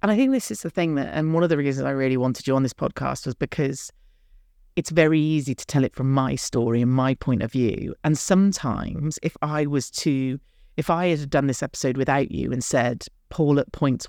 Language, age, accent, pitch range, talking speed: English, 30-49, British, 125-170 Hz, 235 wpm